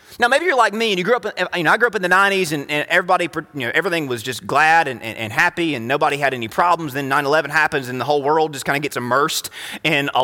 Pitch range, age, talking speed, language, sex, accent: 145-195 Hz, 30-49, 295 wpm, English, male, American